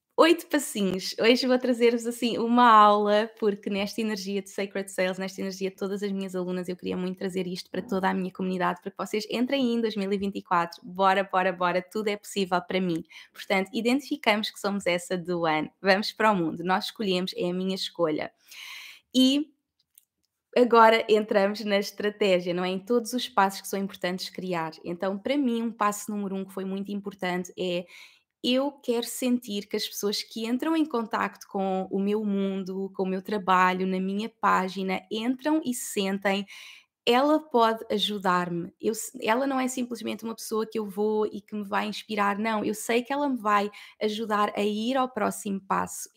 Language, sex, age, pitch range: Portuguese, female, 20-39, 195-230 Hz